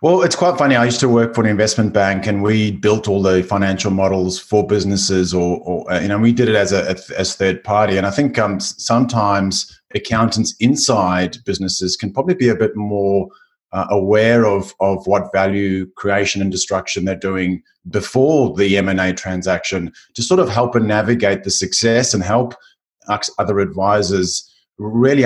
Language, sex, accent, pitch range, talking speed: English, male, Australian, 95-115 Hz, 185 wpm